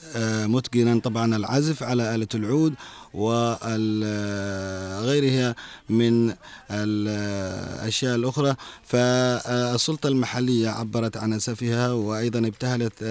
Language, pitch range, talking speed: Arabic, 110-125 Hz, 80 wpm